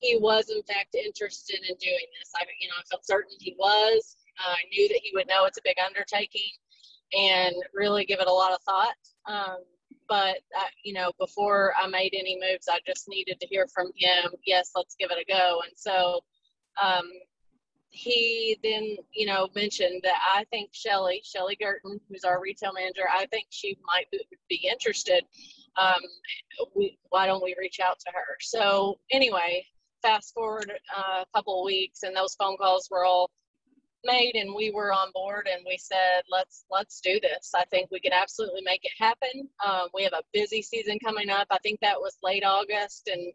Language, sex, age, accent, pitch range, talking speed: English, female, 30-49, American, 185-225 Hz, 195 wpm